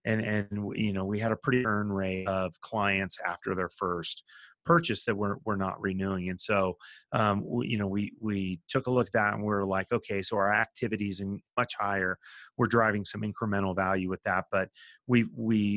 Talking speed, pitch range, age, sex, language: 210 wpm, 90-105 Hz, 30-49, male, English